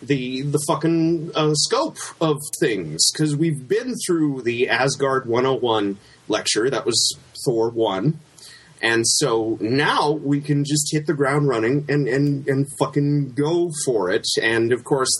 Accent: American